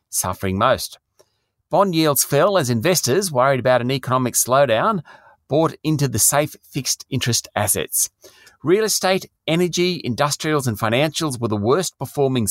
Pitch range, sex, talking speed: 115-155 Hz, male, 140 wpm